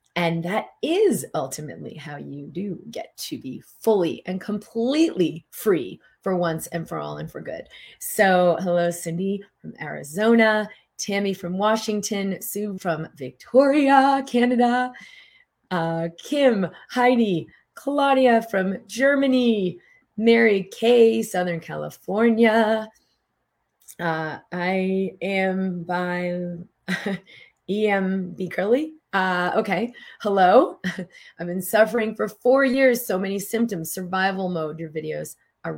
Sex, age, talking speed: female, 30-49, 110 wpm